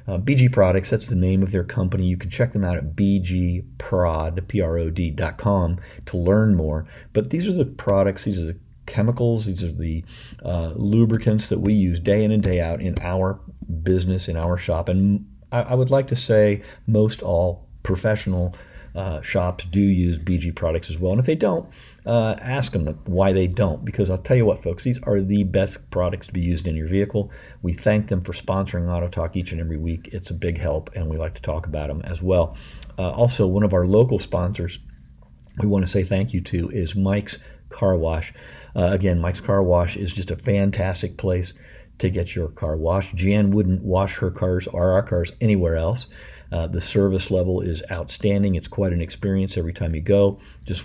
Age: 50-69